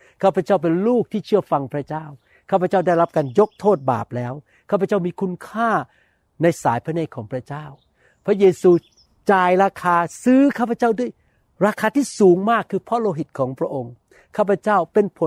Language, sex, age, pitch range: Thai, male, 60-79, 140-195 Hz